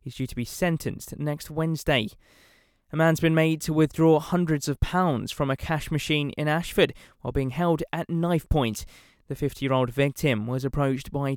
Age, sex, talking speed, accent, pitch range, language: 20-39, male, 180 wpm, British, 130-160 Hz, English